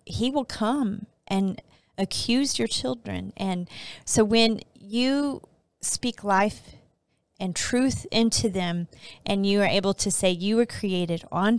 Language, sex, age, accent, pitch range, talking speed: English, female, 30-49, American, 185-230 Hz, 140 wpm